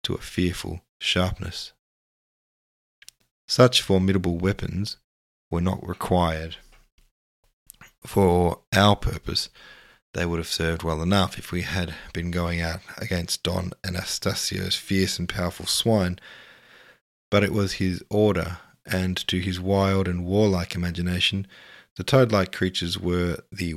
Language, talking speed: English, 125 wpm